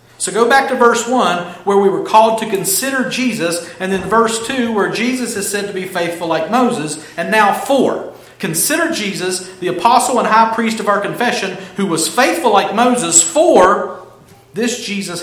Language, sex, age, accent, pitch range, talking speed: English, male, 50-69, American, 175-240 Hz, 185 wpm